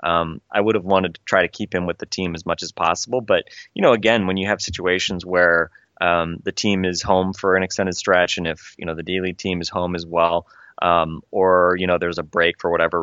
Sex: male